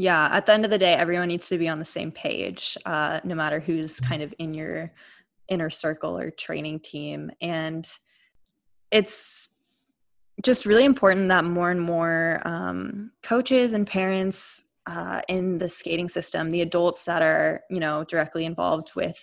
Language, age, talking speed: English, 20-39, 170 wpm